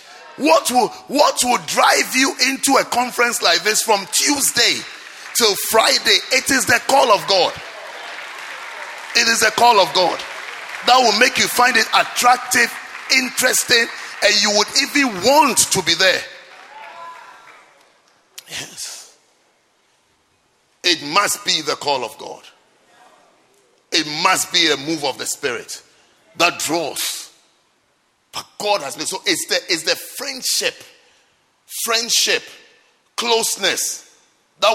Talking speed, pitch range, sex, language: 130 wpm, 210-275 Hz, male, English